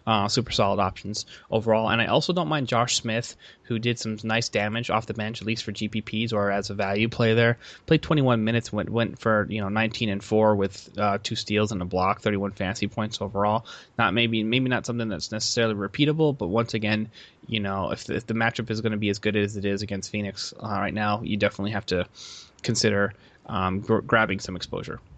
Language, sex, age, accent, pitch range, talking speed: English, male, 20-39, American, 105-125 Hz, 220 wpm